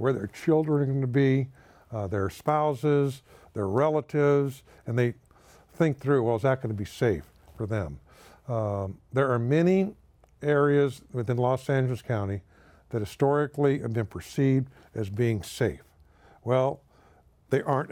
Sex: male